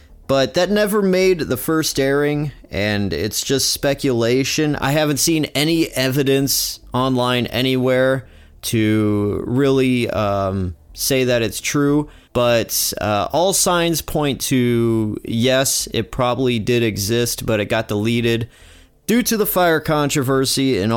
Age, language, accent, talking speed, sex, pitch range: 30-49, English, American, 130 wpm, male, 105-135 Hz